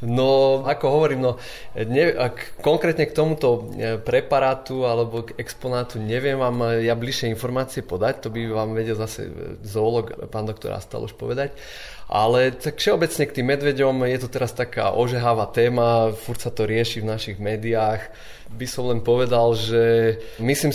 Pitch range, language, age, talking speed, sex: 105-120 Hz, Slovak, 20-39, 155 wpm, male